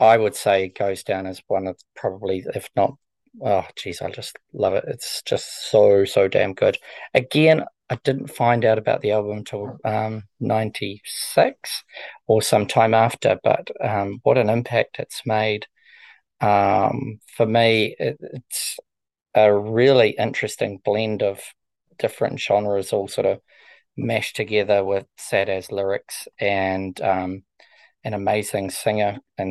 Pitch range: 100-115 Hz